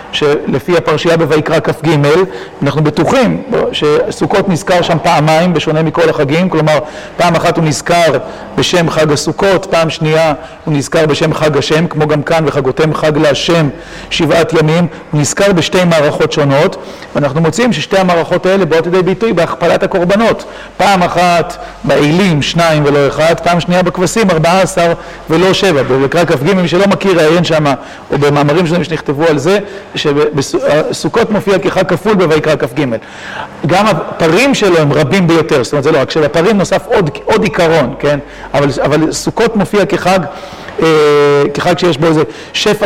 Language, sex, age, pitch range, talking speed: Hebrew, male, 40-59, 155-185 Hz, 150 wpm